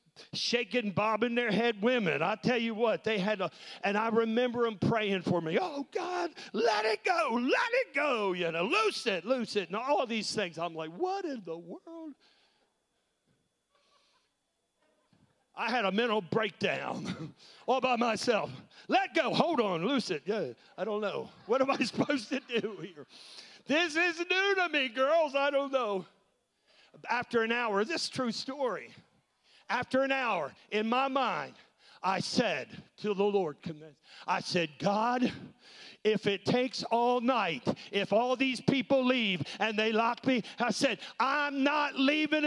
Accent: American